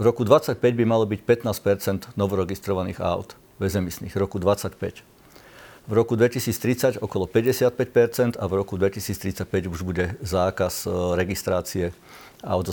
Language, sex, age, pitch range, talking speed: Slovak, male, 50-69, 100-125 Hz, 130 wpm